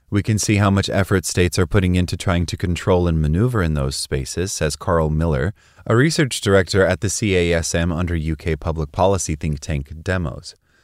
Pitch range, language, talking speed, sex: 80-100 Hz, English, 190 wpm, male